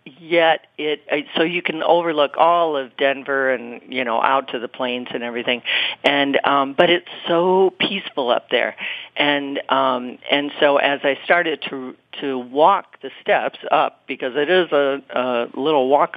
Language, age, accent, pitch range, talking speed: English, 50-69, American, 125-150 Hz, 170 wpm